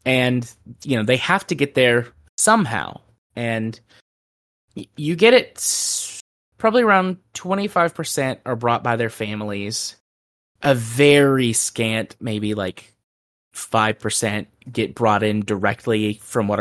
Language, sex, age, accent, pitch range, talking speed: English, male, 20-39, American, 105-135 Hz, 120 wpm